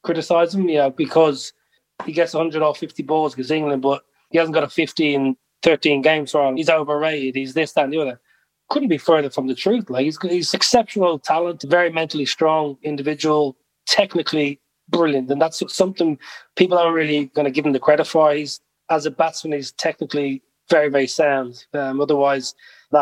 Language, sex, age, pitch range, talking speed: English, male, 20-39, 140-160 Hz, 180 wpm